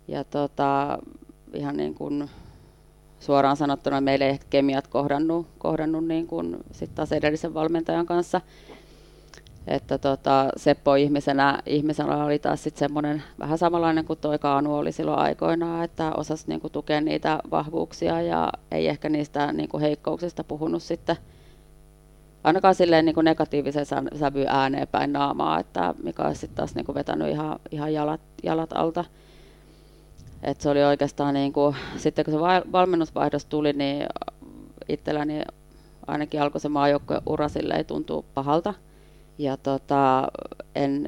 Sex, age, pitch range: female, 30-49, 140-155 Hz